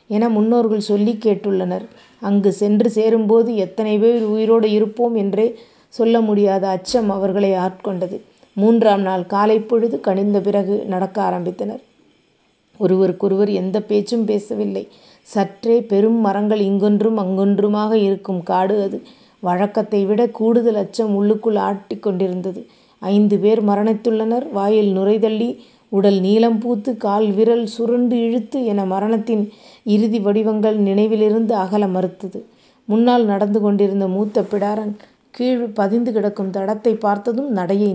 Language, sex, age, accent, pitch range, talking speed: Tamil, female, 30-49, native, 200-225 Hz, 115 wpm